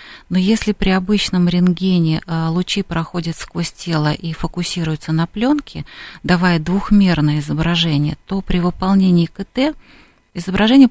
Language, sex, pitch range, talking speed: Russian, female, 165-205 Hz, 115 wpm